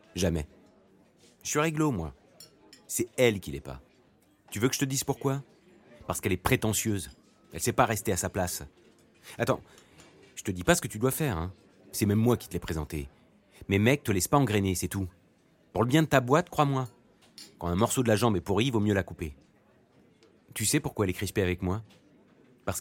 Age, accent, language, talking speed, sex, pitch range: 30-49, French, French, 220 wpm, male, 90-130 Hz